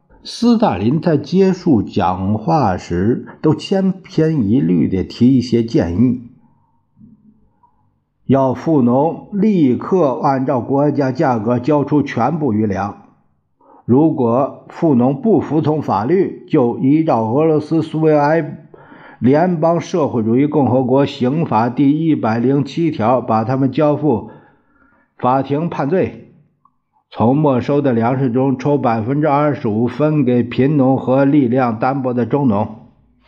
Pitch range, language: 115-155 Hz, Chinese